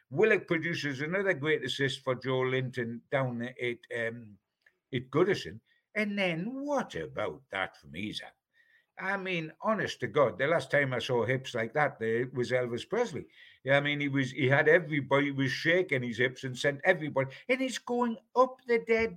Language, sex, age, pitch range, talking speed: English, male, 60-79, 130-190 Hz, 180 wpm